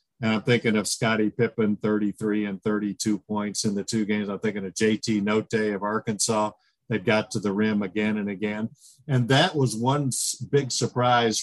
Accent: American